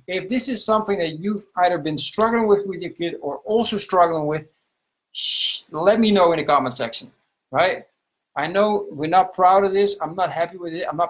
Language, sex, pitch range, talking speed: English, male, 135-180 Hz, 215 wpm